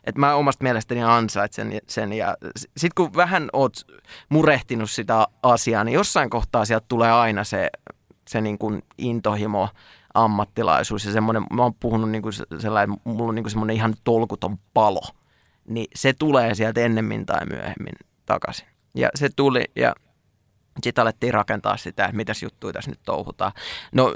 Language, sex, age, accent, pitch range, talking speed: Finnish, male, 20-39, native, 105-120 Hz, 165 wpm